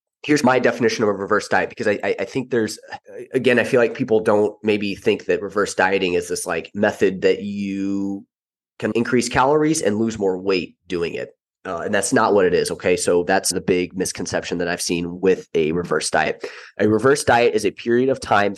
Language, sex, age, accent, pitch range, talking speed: English, male, 20-39, American, 100-150 Hz, 215 wpm